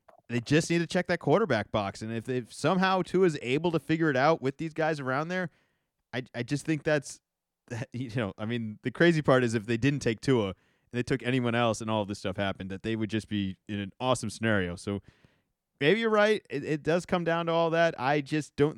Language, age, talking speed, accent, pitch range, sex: English, 30-49, 245 wpm, American, 115-150 Hz, male